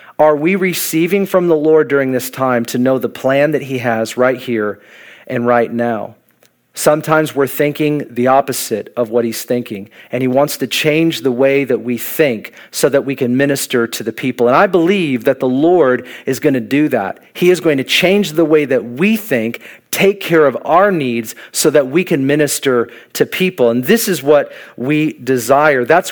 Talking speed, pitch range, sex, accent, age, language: 200 wpm, 130-165 Hz, male, American, 40-59, English